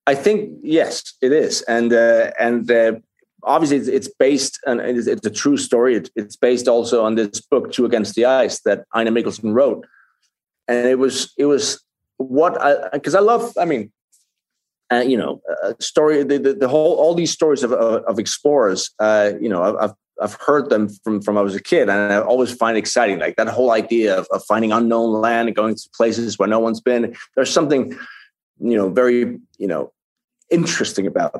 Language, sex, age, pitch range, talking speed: English, male, 30-49, 110-130 Hz, 205 wpm